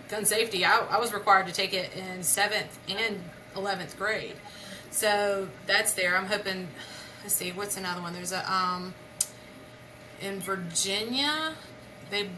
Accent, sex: American, female